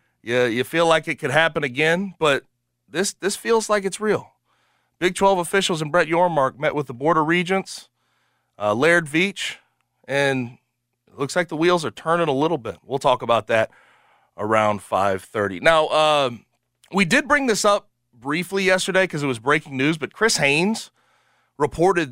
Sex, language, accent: male, English, American